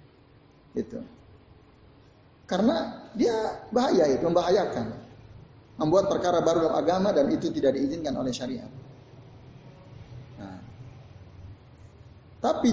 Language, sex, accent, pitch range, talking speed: Indonesian, male, native, 120-200 Hz, 90 wpm